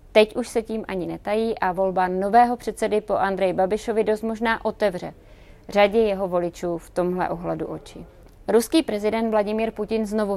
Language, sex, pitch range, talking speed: Czech, female, 190-225 Hz, 160 wpm